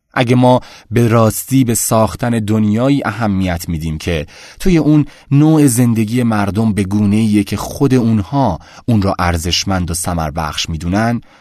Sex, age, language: male, 30-49, Persian